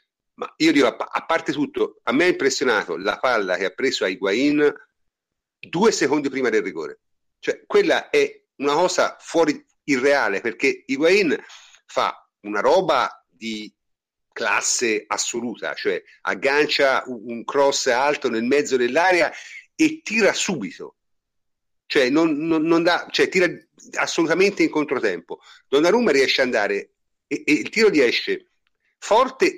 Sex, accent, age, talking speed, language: male, native, 50-69, 140 wpm, Italian